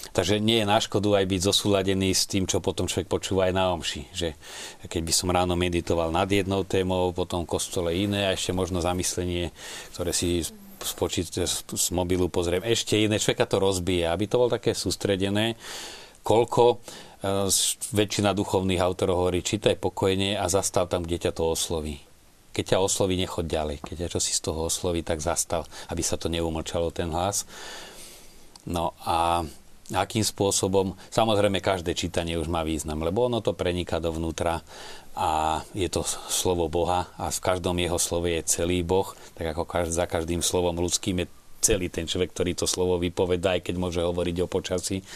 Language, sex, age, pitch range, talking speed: Slovak, male, 40-59, 85-95 Hz, 170 wpm